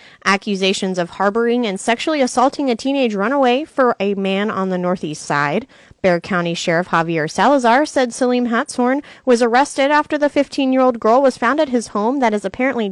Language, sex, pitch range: English, female, 195-265 Hz